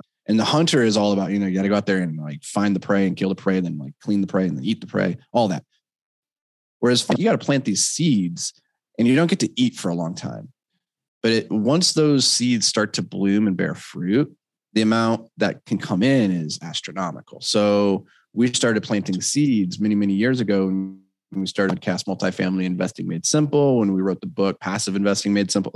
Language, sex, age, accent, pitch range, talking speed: English, male, 20-39, American, 95-120 Hz, 225 wpm